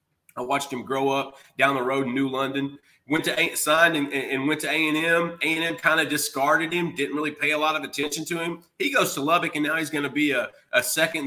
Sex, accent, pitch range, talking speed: male, American, 135-185 Hz, 250 wpm